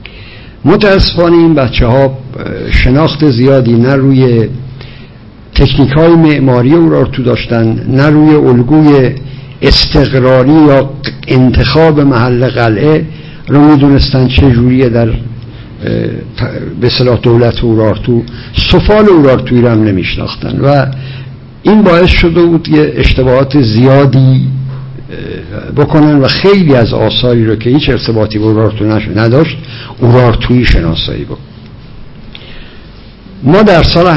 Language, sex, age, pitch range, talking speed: Persian, male, 60-79, 115-140 Hz, 105 wpm